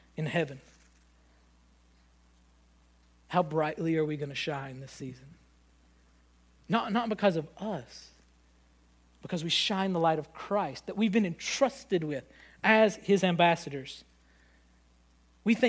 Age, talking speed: 40-59, 120 wpm